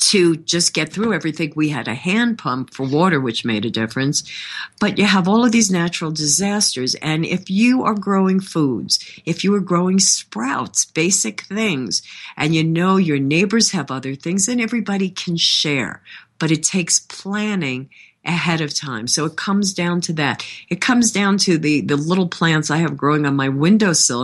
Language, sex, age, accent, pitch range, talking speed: English, female, 50-69, American, 140-185 Hz, 190 wpm